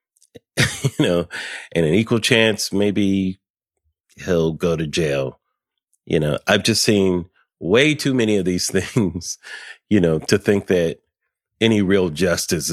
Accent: American